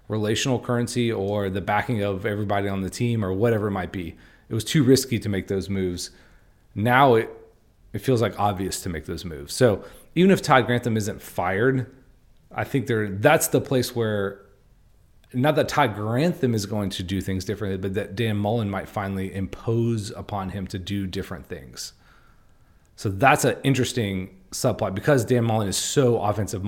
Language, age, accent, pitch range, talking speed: English, 30-49, American, 100-120 Hz, 180 wpm